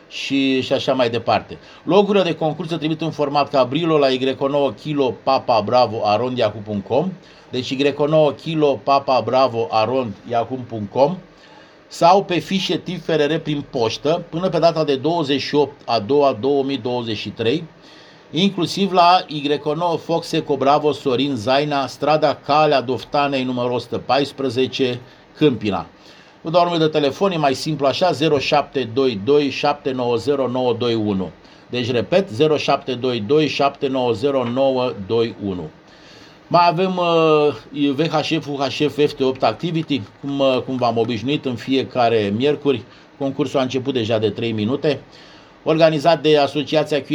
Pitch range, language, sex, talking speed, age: 125-150 Hz, Romanian, male, 105 wpm, 50-69